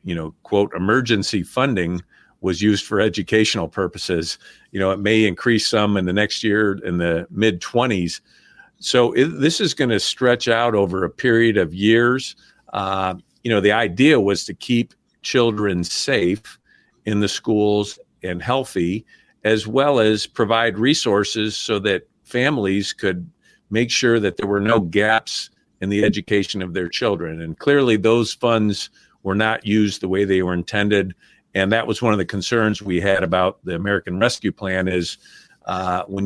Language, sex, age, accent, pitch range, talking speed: English, male, 50-69, American, 95-110 Hz, 170 wpm